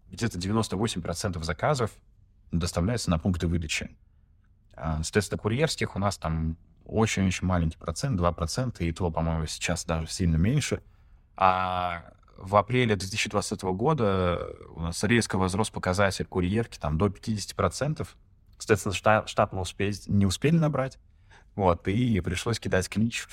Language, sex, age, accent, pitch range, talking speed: Russian, male, 20-39, native, 85-105 Hz, 130 wpm